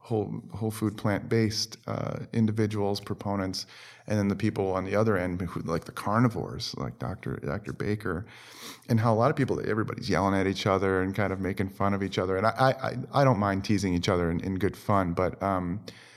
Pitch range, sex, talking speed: 95-120 Hz, male, 210 wpm